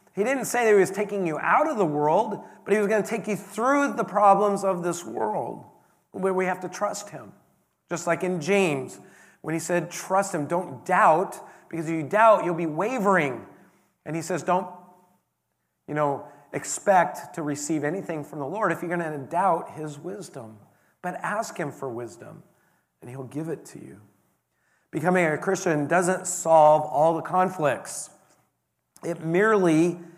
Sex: male